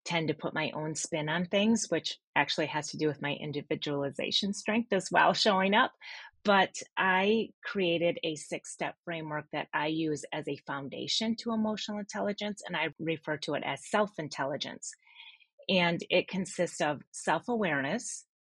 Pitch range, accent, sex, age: 150-195 Hz, American, female, 30-49